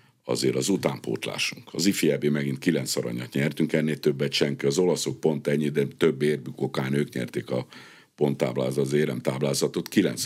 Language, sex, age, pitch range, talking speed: Hungarian, male, 60-79, 65-80 Hz, 160 wpm